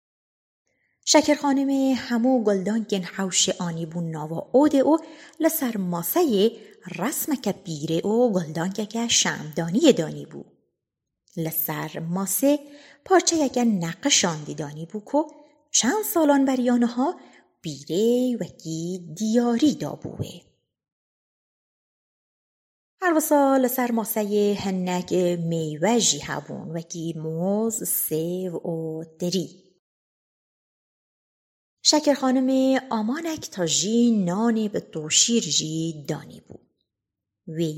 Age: 30-49